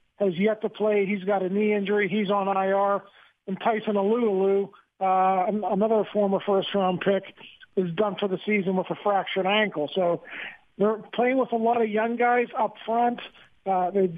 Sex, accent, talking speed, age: male, American, 185 wpm, 50-69